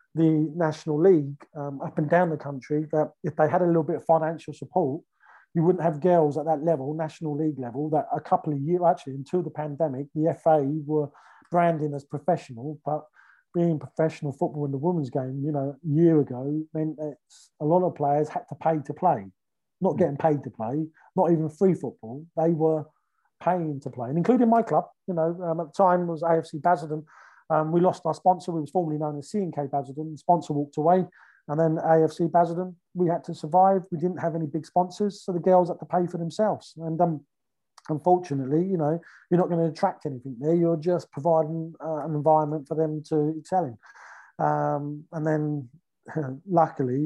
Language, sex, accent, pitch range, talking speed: English, male, British, 150-175 Hz, 205 wpm